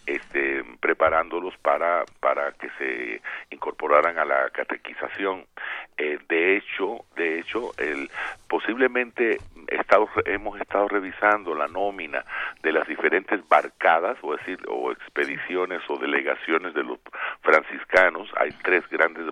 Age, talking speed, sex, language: 50-69, 120 wpm, male, Spanish